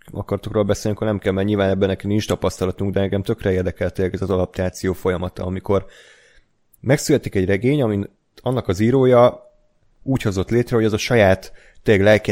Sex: male